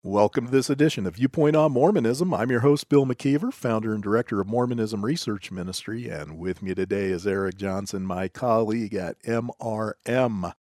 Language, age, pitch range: English, 40-59, 100-140 Hz